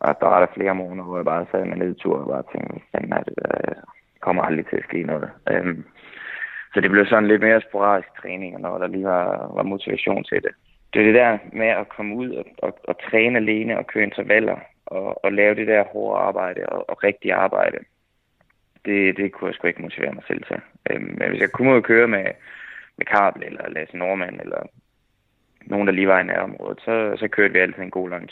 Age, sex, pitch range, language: 20-39, male, 95-110 Hz, Danish